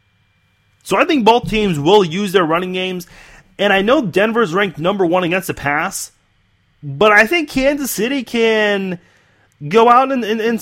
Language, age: English, 30-49